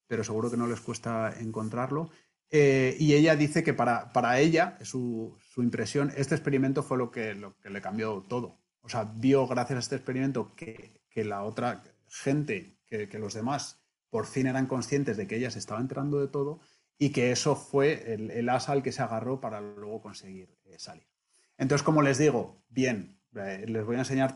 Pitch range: 115-145 Hz